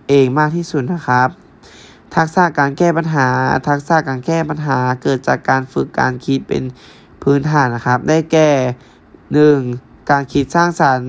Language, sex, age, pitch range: Thai, male, 20-39, 130-155 Hz